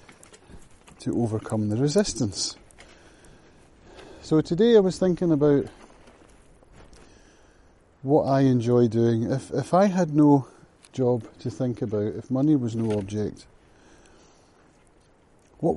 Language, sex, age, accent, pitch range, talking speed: English, male, 30-49, British, 105-135 Hz, 110 wpm